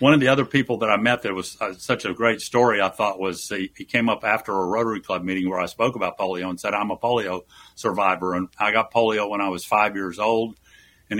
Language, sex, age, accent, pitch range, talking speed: English, male, 60-79, American, 95-120 Hz, 255 wpm